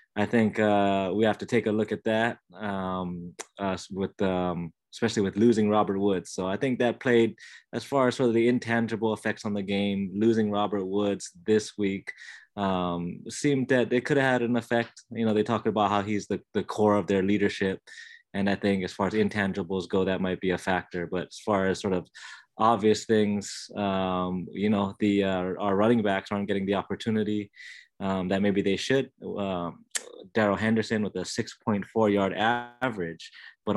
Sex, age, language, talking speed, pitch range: male, 20-39, English, 195 wpm, 95-110 Hz